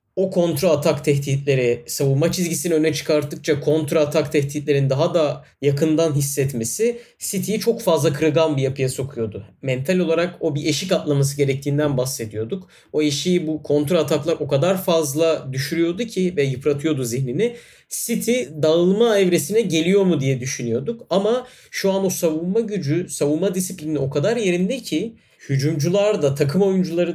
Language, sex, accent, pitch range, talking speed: Turkish, male, native, 140-180 Hz, 145 wpm